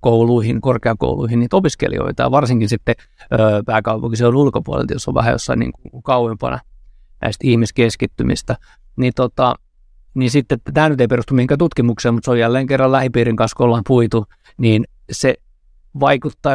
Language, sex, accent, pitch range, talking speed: Finnish, male, native, 115-130 Hz, 150 wpm